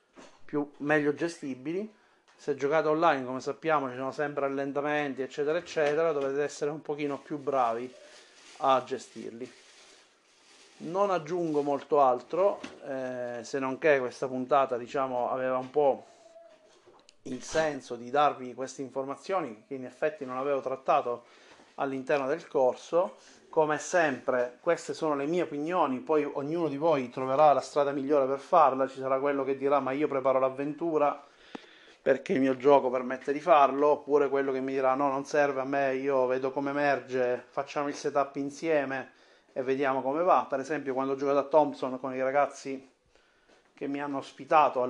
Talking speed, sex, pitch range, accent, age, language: 160 wpm, male, 130-150 Hz, native, 30-49, Italian